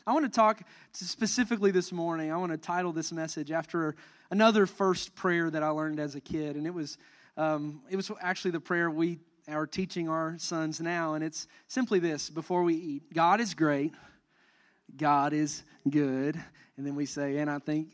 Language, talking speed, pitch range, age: English, 195 wpm, 160-225 Hz, 30-49